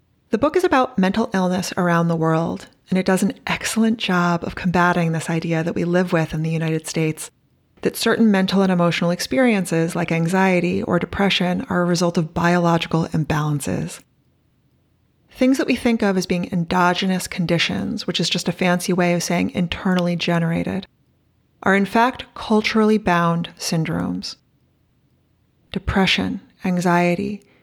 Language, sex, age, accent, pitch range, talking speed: English, female, 30-49, American, 170-210 Hz, 150 wpm